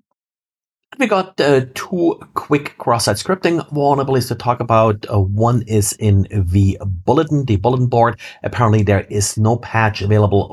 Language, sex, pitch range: English, male, 100-120 Hz